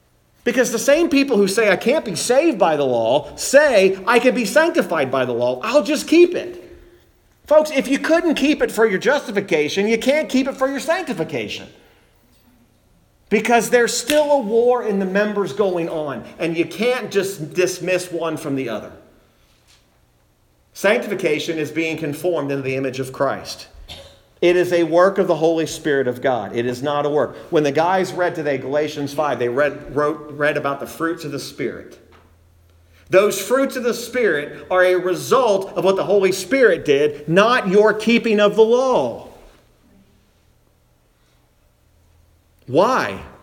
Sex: male